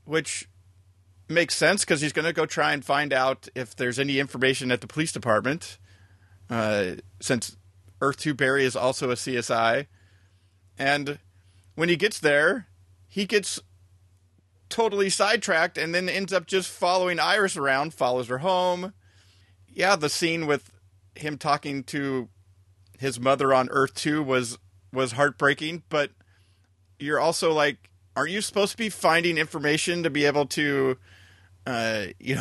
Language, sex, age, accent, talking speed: English, male, 30-49, American, 150 wpm